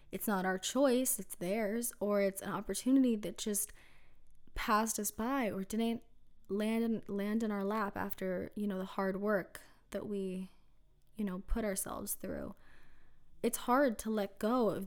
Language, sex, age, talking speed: English, female, 20-39, 165 wpm